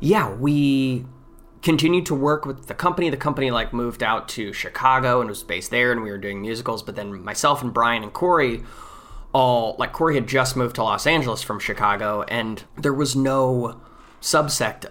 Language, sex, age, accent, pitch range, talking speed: English, male, 20-39, American, 105-135 Hz, 190 wpm